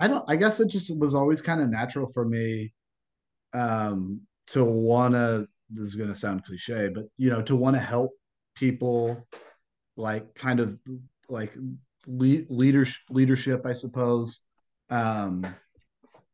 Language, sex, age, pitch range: English, male, 30-49, 110-125 Hz